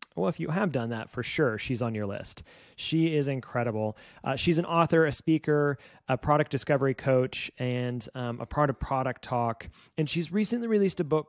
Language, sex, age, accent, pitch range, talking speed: English, male, 30-49, American, 120-160 Hz, 200 wpm